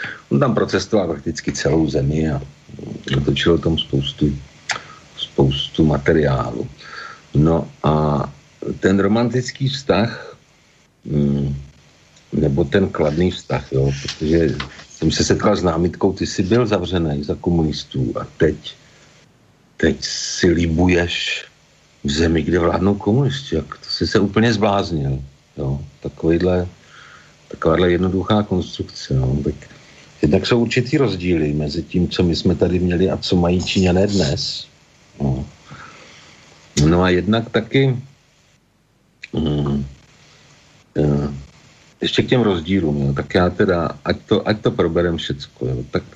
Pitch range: 75-100 Hz